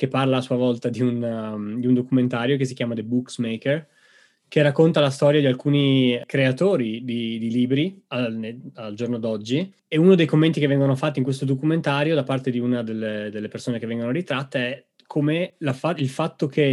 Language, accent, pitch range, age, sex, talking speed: Italian, native, 120-140 Hz, 20-39, male, 195 wpm